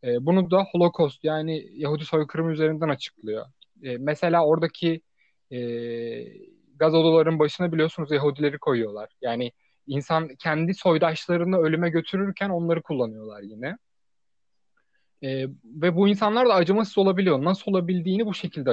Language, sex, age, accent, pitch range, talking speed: Turkish, male, 30-49, native, 135-170 Hz, 110 wpm